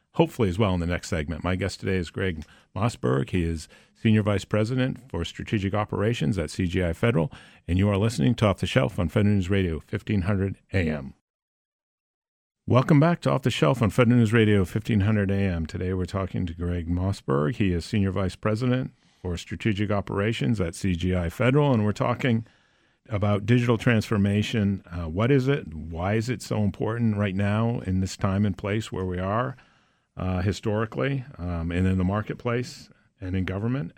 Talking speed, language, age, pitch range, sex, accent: 180 wpm, English, 50-69, 90-110 Hz, male, American